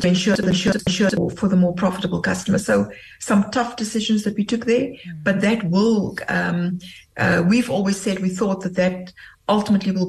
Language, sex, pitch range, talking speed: English, female, 185-215 Hz, 170 wpm